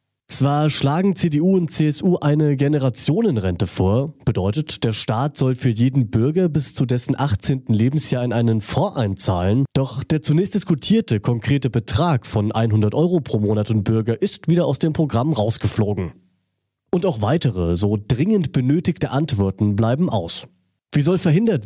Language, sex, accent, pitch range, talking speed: German, male, German, 110-155 Hz, 150 wpm